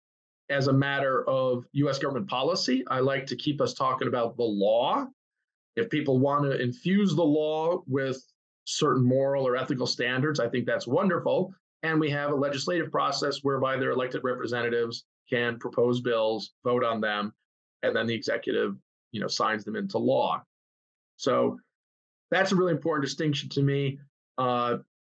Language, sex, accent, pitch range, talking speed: English, male, American, 125-145 Hz, 165 wpm